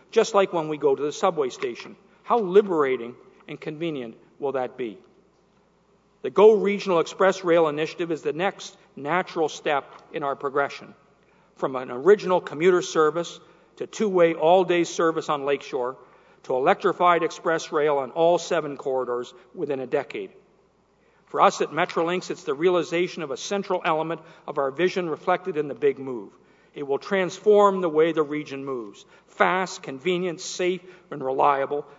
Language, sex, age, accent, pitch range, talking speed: English, male, 50-69, American, 150-195 Hz, 160 wpm